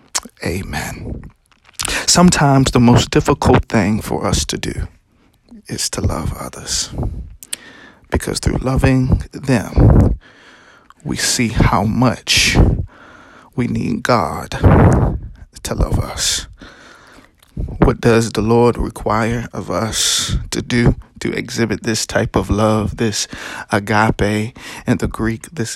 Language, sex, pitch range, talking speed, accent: English, male, 105-120 Hz, 115 wpm, American